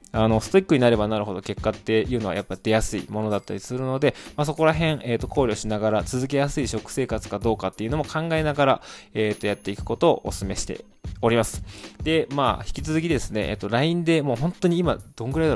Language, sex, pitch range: Japanese, male, 100-130 Hz